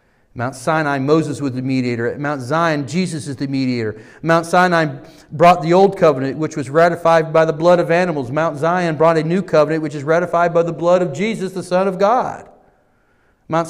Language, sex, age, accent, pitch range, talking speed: English, male, 40-59, American, 130-180 Hz, 195 wpm